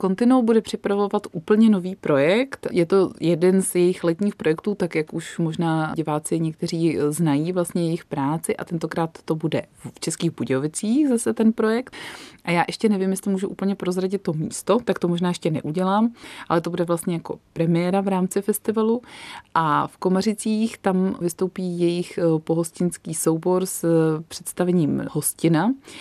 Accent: native